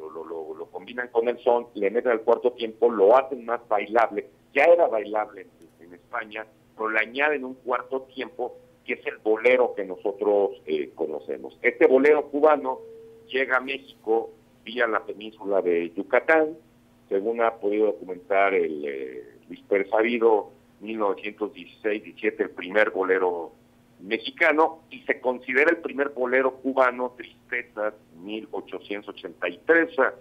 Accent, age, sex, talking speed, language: Mexican, 50-69, male, 140 wpm, Spanish